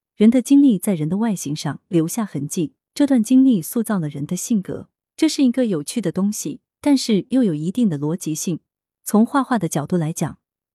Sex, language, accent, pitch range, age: female, Chinese, native, 160-225 Hz, 30-49